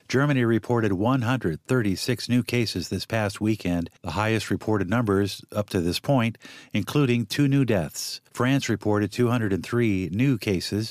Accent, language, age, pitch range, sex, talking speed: American, English, 50-69, 100-125 Hz, male, 140 wpm